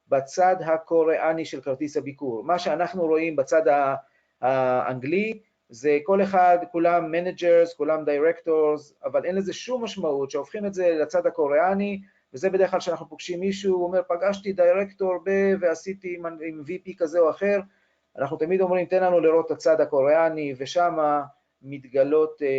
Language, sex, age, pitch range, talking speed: Hebrew, male, 40-59, 145-185 Hz, 145 wpm